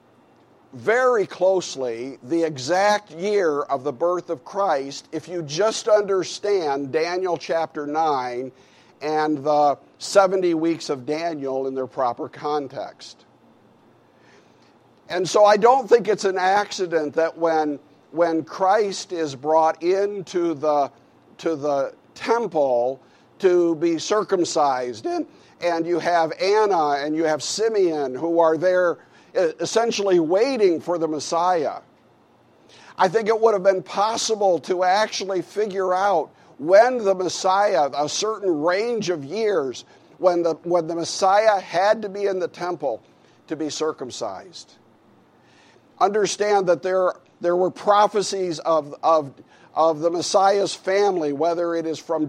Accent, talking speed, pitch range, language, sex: American, 130 wpm, 155-200 Hz, English, male